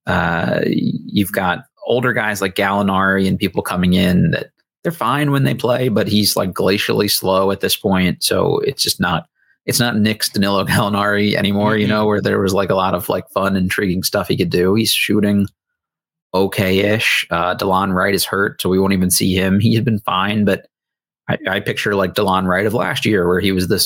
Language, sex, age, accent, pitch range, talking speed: English, male, 30-49, American, 90-105 Hz, 210 wpm